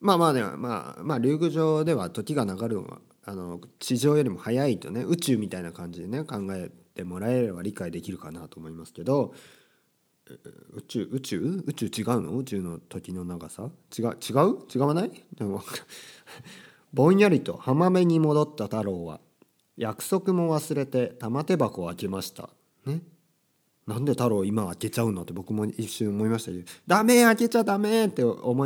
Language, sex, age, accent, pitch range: Japanese, male, 40-59, native, 95-150 Hz